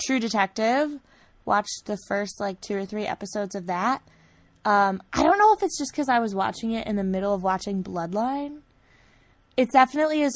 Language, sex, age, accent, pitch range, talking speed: English, female, 20-39, American, 175-220 Hz, 190 wpm